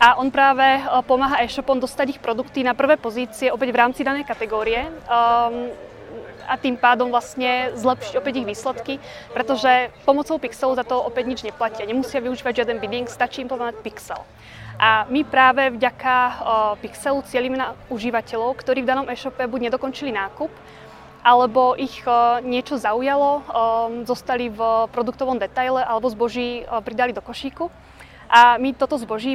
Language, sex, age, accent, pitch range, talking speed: Czech, female, 20-39, native, 235-260 Hz, 155 wpm